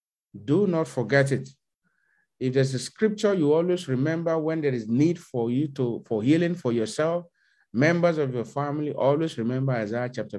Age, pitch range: 50-69, 140-190 Hz